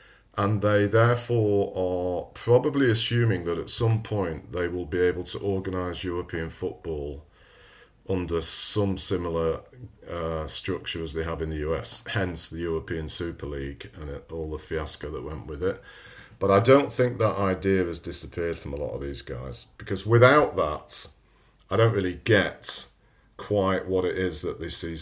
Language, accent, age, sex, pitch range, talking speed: English, British, 40-59, male, 85-105 Hz, 170 wpm